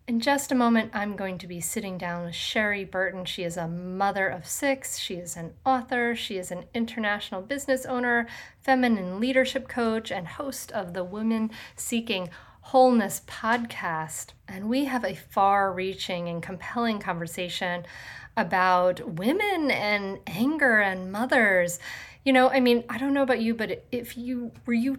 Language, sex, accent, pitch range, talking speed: English, female, American, 185-250 Hz, 165 wpm